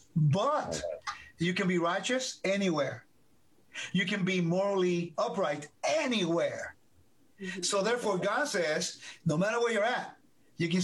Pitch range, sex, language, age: 170-215 Hz, male, English, 50-69